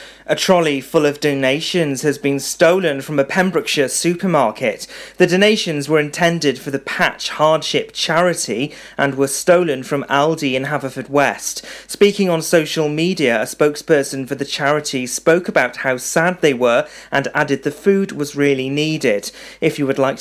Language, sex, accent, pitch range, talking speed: English, male, British, 135-165 Hz, 165 wpm